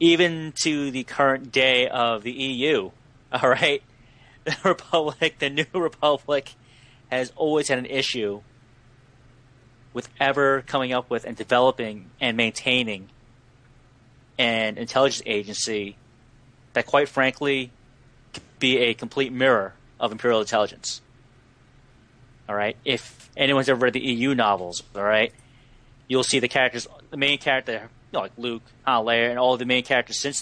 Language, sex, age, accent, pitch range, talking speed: English, male, 30-49, American, 120-130 Hz, 140 wpm